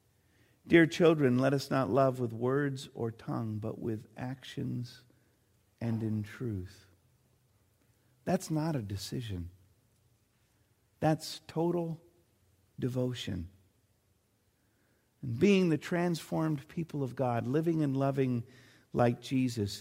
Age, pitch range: 50-69, 100-145 Hz